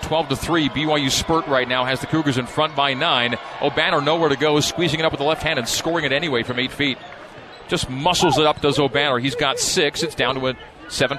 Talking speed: 235 wpm